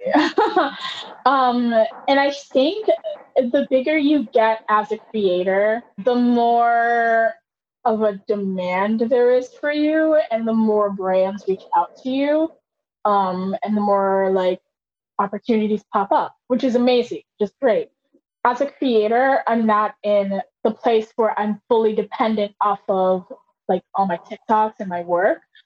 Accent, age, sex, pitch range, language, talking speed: American, 10-29, female, 205-260 Hz, English, 145 wpm